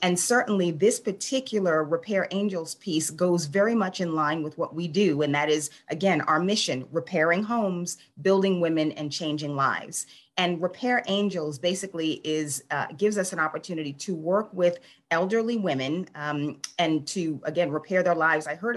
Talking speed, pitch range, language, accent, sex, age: 170 wpm, 160-210 Hz, English, American, female, 30-49